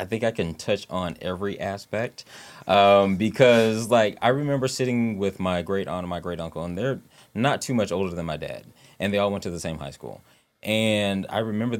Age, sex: 20-39, male